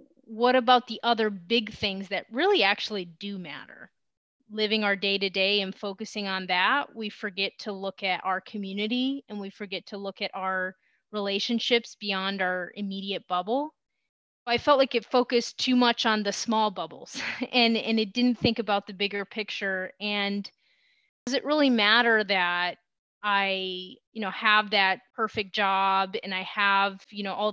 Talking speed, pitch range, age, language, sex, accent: 165 wpm, 195-235 Hz, 30-49, English, female, American